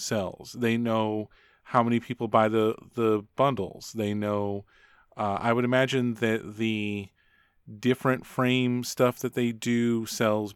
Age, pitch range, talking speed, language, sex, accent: 30-49, 105-120 Hz, 140 wpm, English, male, American